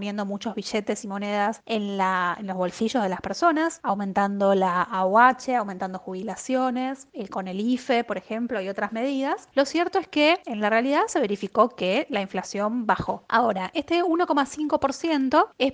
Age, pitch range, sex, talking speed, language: 20-39, 200-270 Hz, female, 155 wpm, Spanish